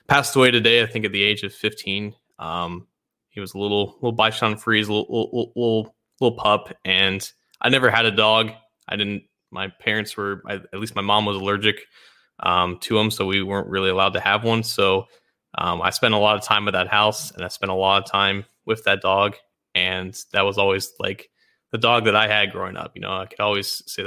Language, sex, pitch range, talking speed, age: English, male, 100-115 Hz, 225 wpm, 20-39